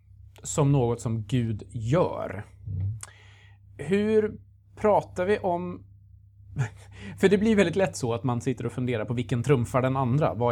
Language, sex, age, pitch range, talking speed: Swedish, male, 30-49, 100-135 Hz, 150 wpm